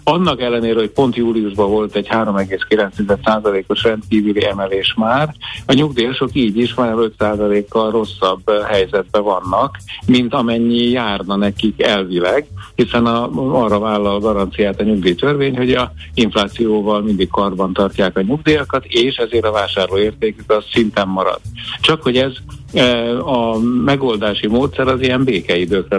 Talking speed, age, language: 135 wpm, 60-79, Hungarian